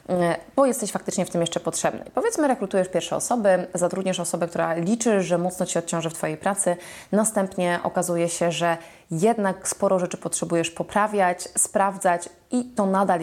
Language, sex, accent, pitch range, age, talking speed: Polish, female, native, 175-210 Hz, 20-39, 160 wpm